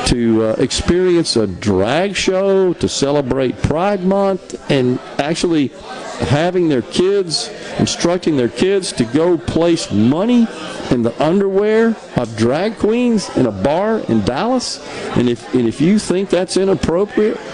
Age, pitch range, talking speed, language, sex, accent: 50-69, 120-185 Hz, 140 wpm, English, male, American